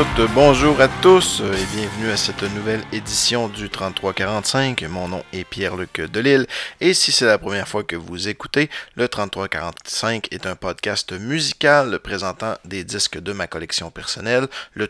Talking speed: 155 wpm